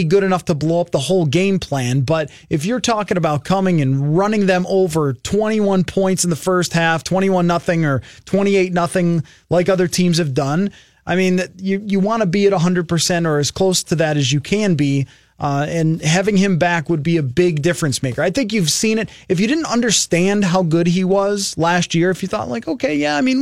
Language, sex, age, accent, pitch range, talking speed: English, male, 30-49, American, 150-190 Hz, 225 wpm